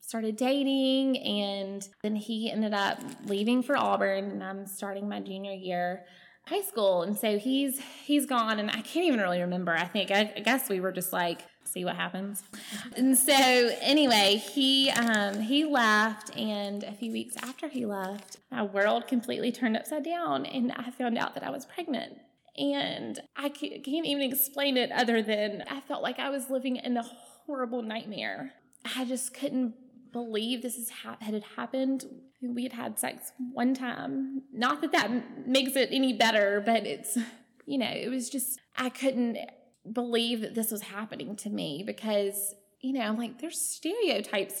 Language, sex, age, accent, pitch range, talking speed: English, female, 20-39, American, 215-270 Hz, 180 wpm